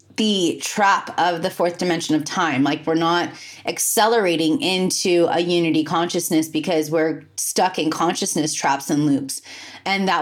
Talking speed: 155 wpm